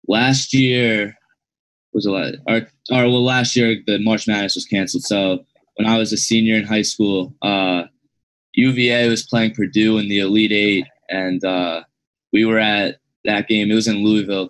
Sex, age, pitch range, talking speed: male, 10-29, 100-115 Hz, 175 wpm